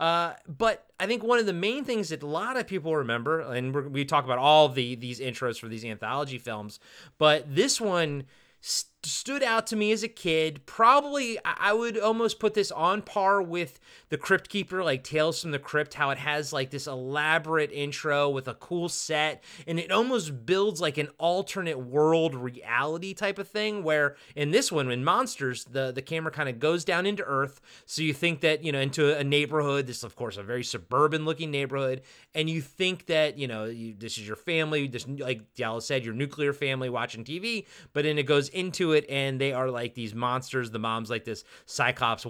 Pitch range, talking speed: 125-175 Hz, 210 wpm